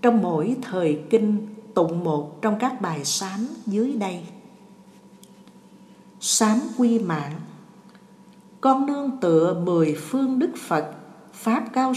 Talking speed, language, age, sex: 120 wpm, Vietnamese, 60-79, female